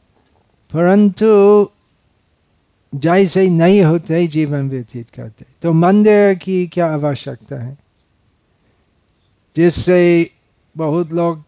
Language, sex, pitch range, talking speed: Hindi, male, 115-175 Hz, 85 wpm